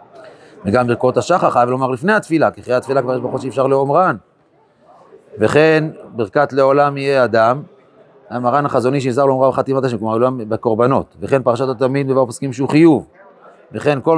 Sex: male